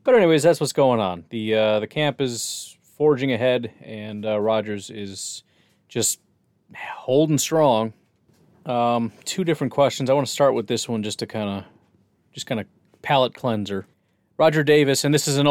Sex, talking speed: male, 180 wpm